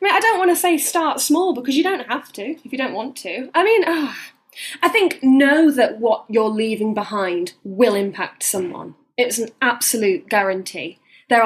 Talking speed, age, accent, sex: 200 wpm, 10-29, British, female